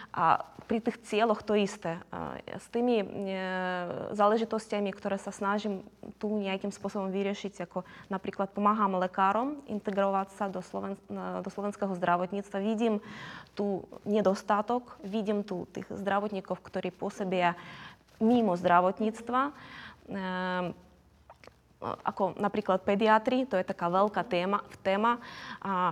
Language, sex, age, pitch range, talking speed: Slovak, female, 20-39, 185-210 Hz, 110 wpm